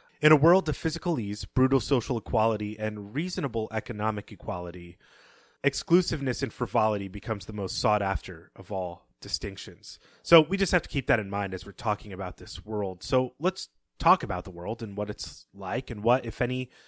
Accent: American